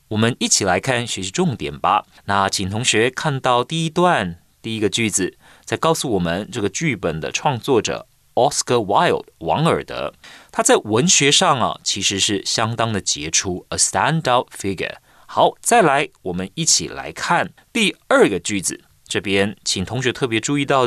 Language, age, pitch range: Chinese, 30-49, 100-155 Hz